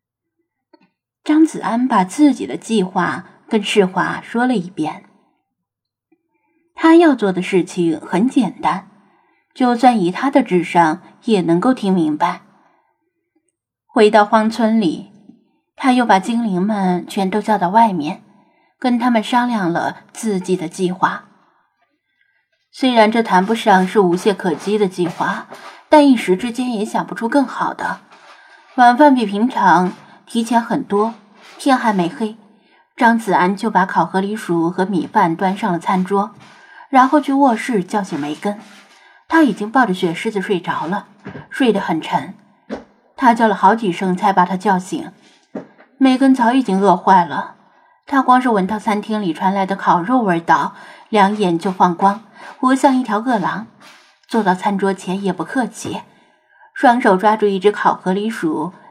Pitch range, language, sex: 190-255 Hz, Chinese, female